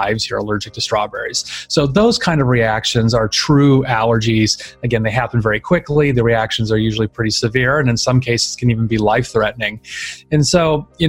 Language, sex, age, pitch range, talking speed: English, male, 30-49, 115-135 Hz, 185 wpm